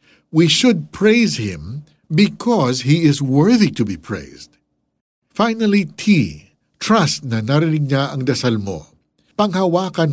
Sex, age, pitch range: male, 60-79, 110-170 Hz